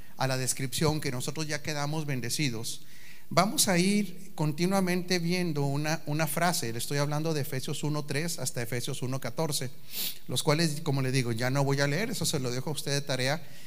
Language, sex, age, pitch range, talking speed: Spanish, male, 40-59, 130-170 Hz, 190 wpm